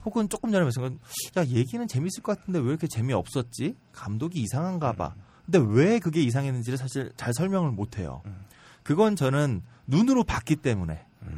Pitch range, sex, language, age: 115-180 Hz, male, Korean, 30-49